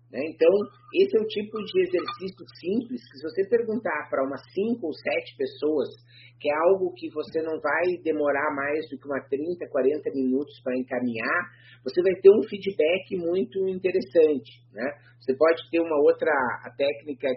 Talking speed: 175 wpm